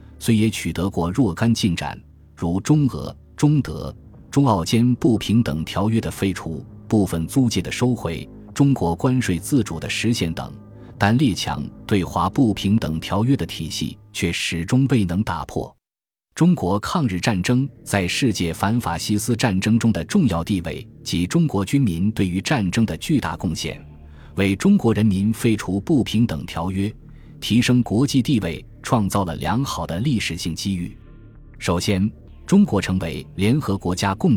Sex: male